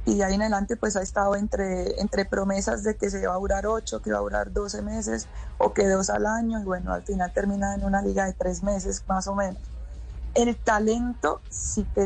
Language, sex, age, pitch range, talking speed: Spanish, female, 20-39, 180-205 Hz, 230 wpm